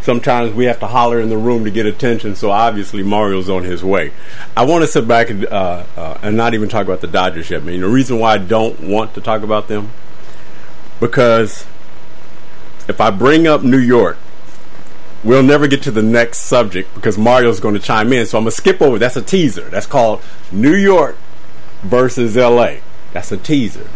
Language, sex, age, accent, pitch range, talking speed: English, male, 50-69, American, 105-125 Hz, 210 wpm